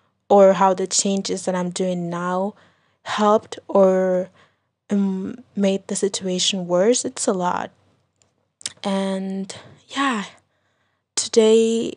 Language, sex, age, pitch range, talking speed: English, female, 20-39, 185-220 Hz, 100 wpm